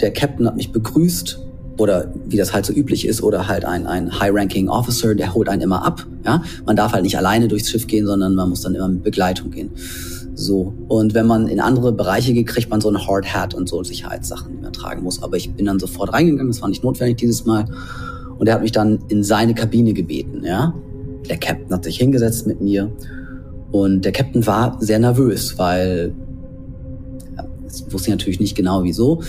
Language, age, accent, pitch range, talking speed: German, 30-49, German, 100-120 Hz, 215 wpm